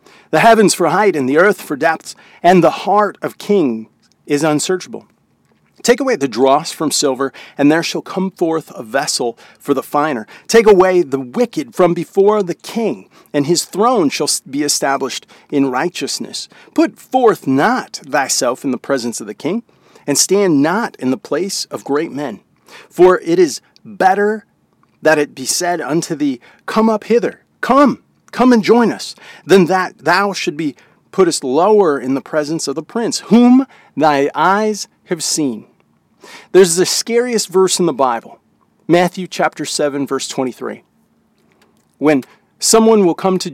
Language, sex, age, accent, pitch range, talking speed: English, male, 40-59, American, 140-200 Hz, 165 wpm